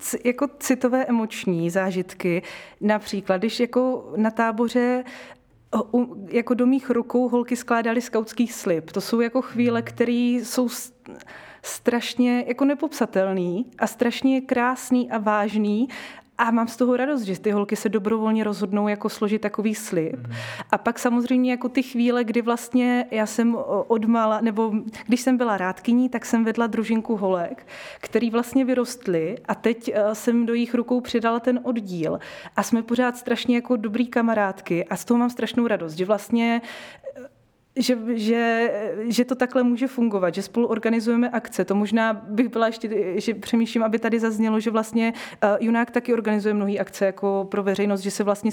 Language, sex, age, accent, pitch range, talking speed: Czech, female, 20-39, native, 205-245 Hz, 160 wpm